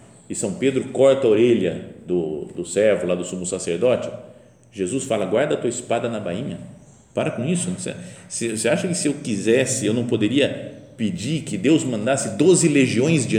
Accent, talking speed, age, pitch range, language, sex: Brazilian, 180 wpm, 50-69, 110-165 Hz, Portuguese, male